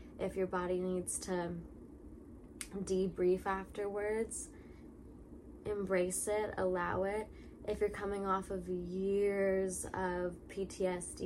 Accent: American